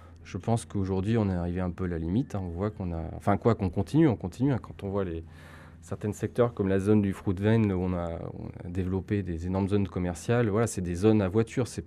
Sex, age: male, 20-39